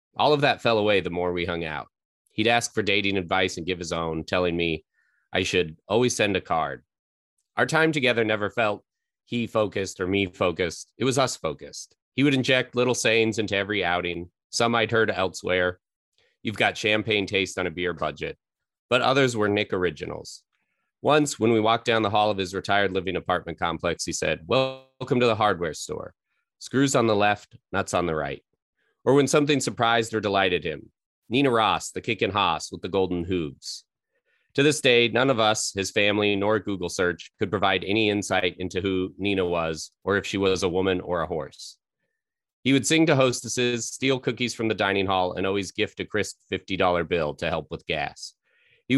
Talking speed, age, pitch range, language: 195 wpm, 30-49, 95-120 Hz, English